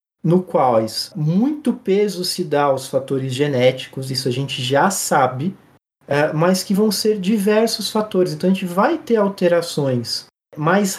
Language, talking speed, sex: Portuguese, 145 wpm, male